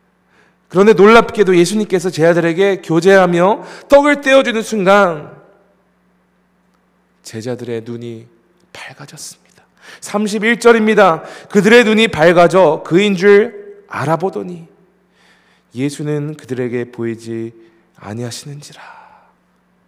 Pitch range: 170-225 Hz